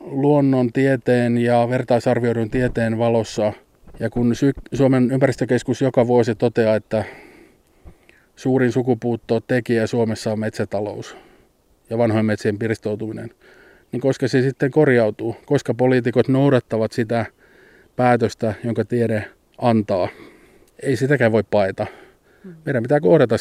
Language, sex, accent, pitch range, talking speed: Finnish, male, native, 110-130 Hz, 115 wpm